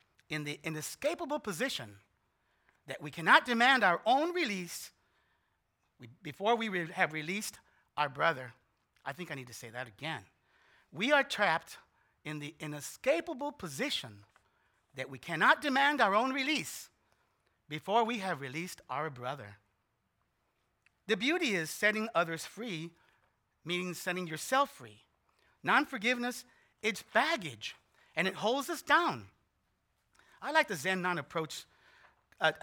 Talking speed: 125 wpm